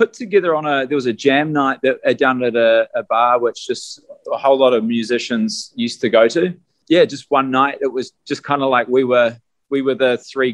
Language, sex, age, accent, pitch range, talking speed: English, male, 20-39, Australian, 115-150 Hz, 250 wpm